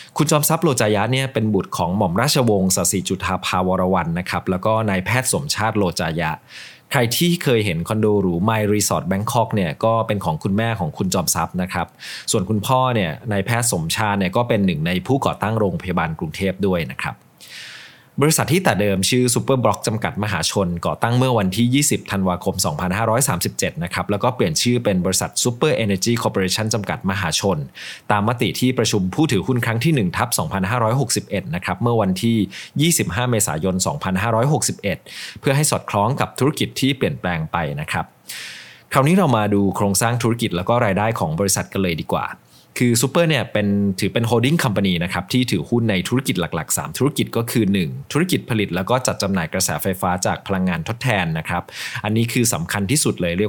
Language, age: English, 20-39